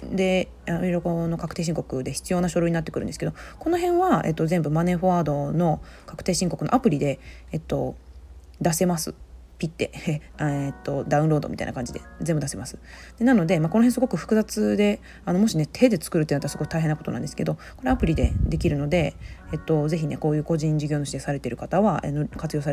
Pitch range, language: 145-205 Hz, Japanese